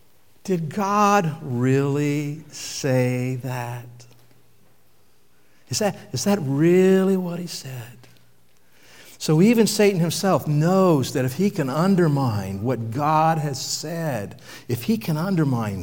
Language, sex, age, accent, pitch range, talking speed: English, male, 60-79, American, 120-170 Hz, 115 wpm